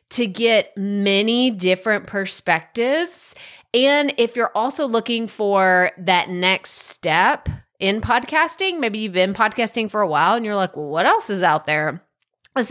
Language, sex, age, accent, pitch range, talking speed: English, female, 20-39, American, 180-230 Hz, 155 wpm